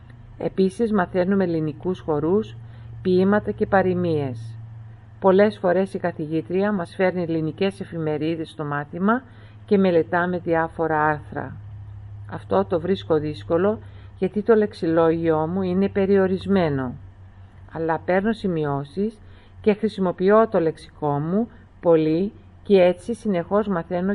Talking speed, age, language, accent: 110 wpm, 50-69, Greek, native